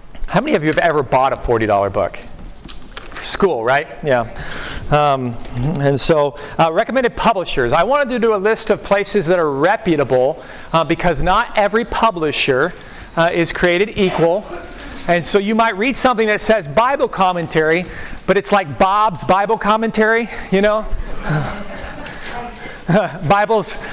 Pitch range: 155-205 Hz